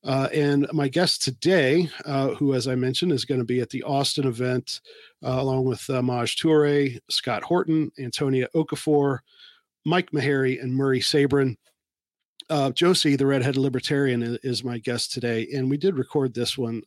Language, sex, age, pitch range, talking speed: English, male, 40-59, 125-145 Hz, 170 wpm